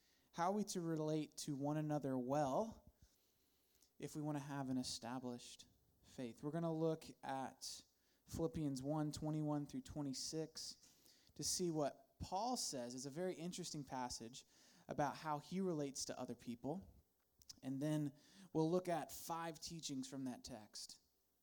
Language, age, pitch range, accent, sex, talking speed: English, 20-39, 130-165 Hz, American, male, 150 wpm